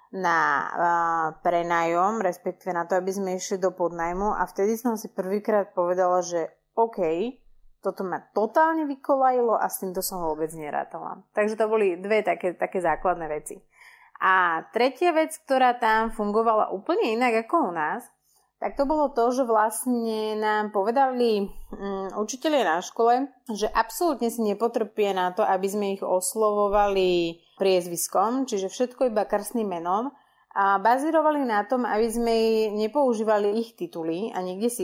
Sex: female